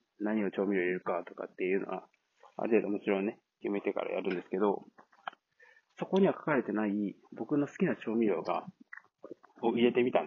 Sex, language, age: male, Japanese, 30-49